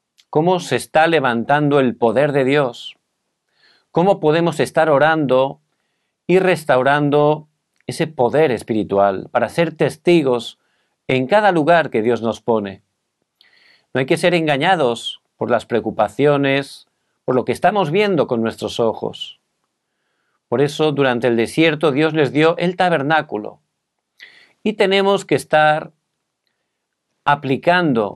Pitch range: 125-170 Hz